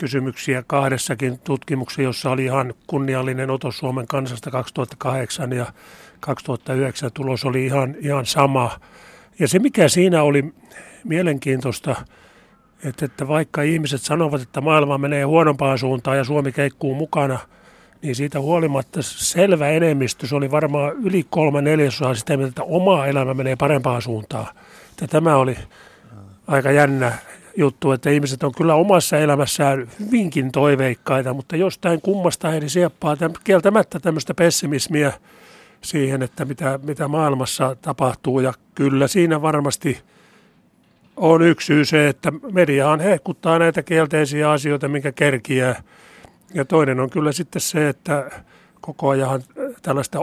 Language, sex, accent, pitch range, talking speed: Finnish, male, native, 130-155 Hz, 130 wpm